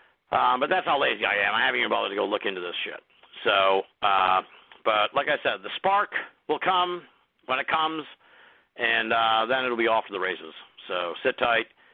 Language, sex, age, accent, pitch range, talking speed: English, male, 50-69, American, 110-160 Hz, 210 wpm